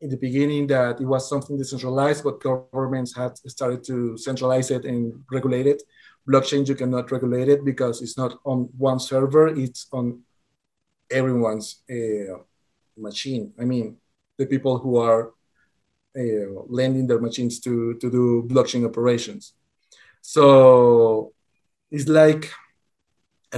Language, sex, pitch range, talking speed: English, male, 125-145 Hz, 135 wpm